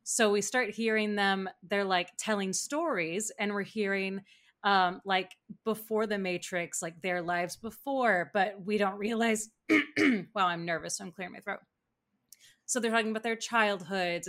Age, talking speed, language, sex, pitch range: 20-39, 160 wpm, English, female, 175-210 Hz